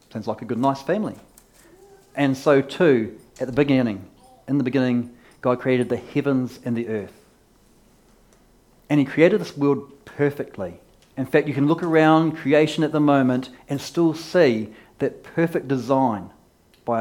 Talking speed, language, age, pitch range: 160 wpm, English, 40-59, 125-150 Hz